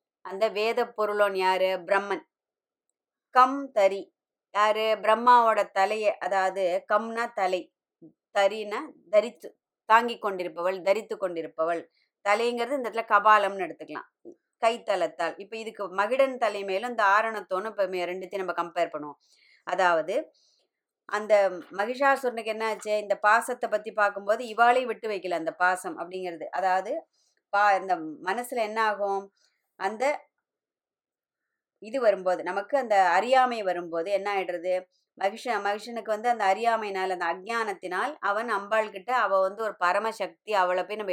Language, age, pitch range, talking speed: Tamil, 20-39, 190-225 Hz, 125 wpm